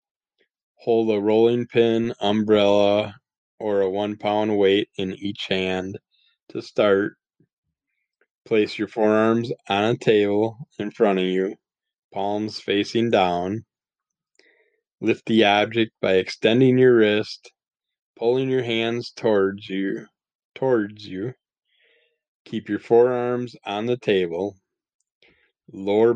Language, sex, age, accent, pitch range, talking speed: English, male, 20-39, American, 100-115 Hz, 110 wpm